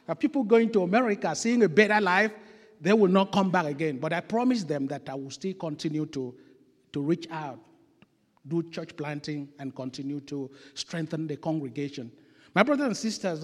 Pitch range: 155-200 Hz